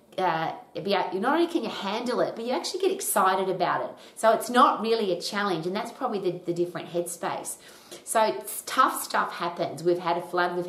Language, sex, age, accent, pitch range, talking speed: English, female, 30-49, Australian, 170-195 Hz, 210 wpm